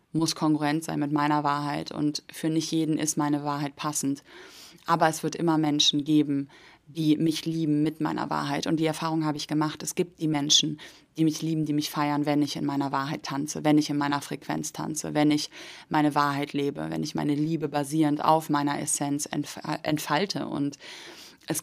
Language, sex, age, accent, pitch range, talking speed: German, female, 20-39, German, 150-165 Hz, 195 wpm